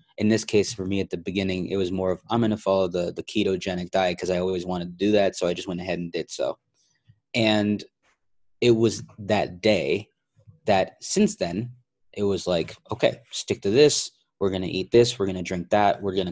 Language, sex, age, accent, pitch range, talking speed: English, male, 20-39, American, 95-110 Hz, 230 wpm